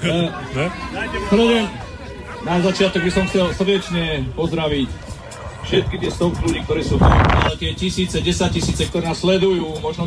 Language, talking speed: Slovak, 145 wpm